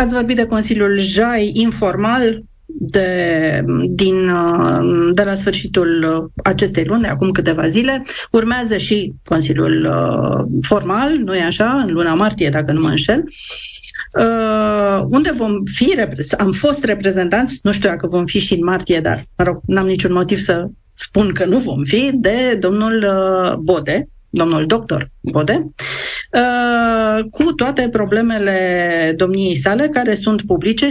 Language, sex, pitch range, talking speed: Romanian, female, 175-215 Hz, 135 wpm